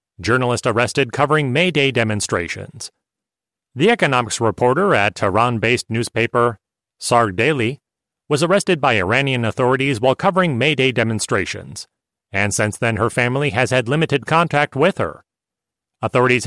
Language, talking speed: English, 135 wpm